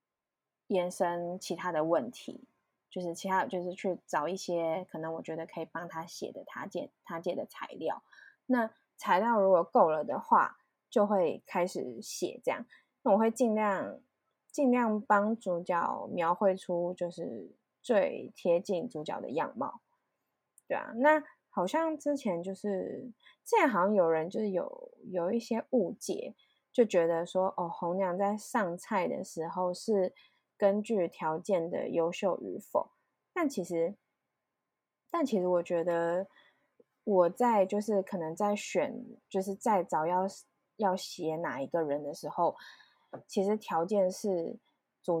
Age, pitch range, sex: 20-39, 175-225 Hz, female